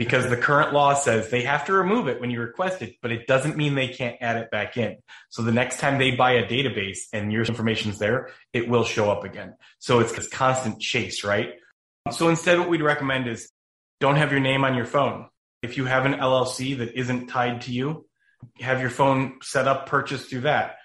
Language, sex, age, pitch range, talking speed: English, male, 30-49, 115-130 Hz, 220 wpm